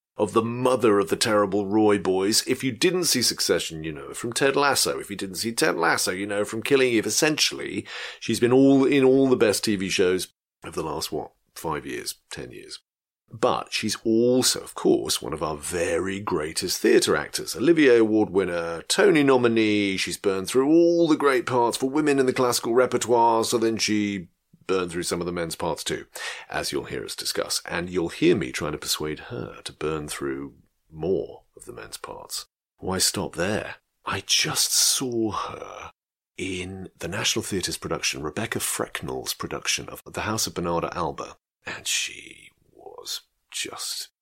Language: English